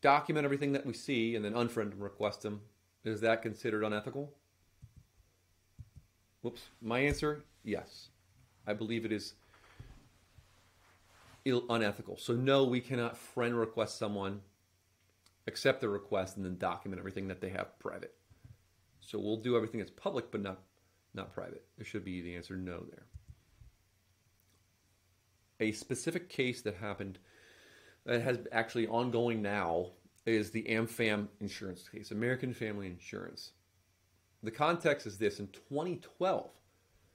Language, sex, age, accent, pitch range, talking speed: English, male, 40-59, American, 95-120 Hz, 135 wpm